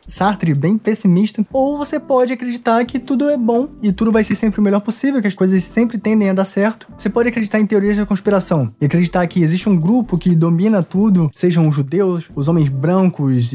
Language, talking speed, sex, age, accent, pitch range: Portuguese, 215 wpm, male, 20-39, Brazilian, 160-230 Hz